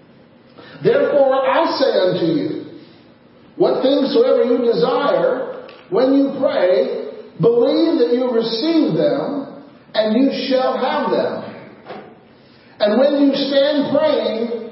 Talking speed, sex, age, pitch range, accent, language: 115 wpm, male, 50-69, 240-310 Hz, American, English